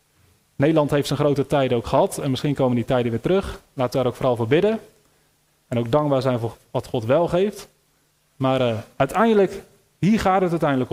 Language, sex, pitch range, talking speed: Dutch, male, 125-160 Hz, 200 wpm